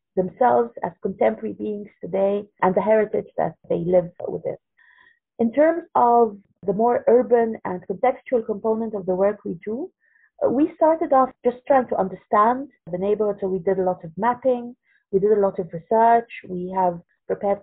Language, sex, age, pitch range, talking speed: English, female, 30-49, 190-245 Hz, 175 wpm